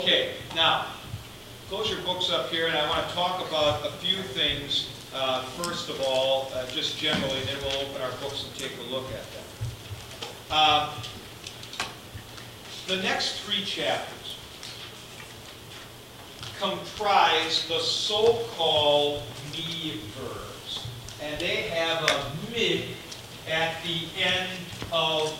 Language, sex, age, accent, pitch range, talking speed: English, male, 50-69, American, 130-185 Hz, 130 wpm